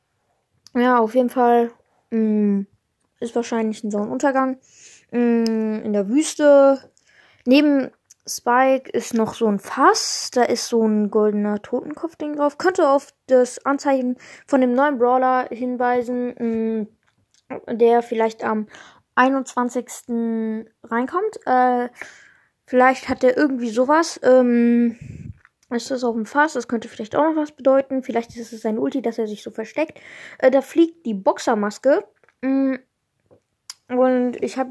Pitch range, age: 230-270 Hz, 20-39